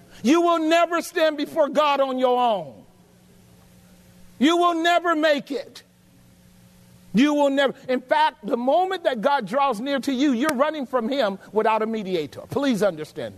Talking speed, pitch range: 160 wpm, 205-285 Hz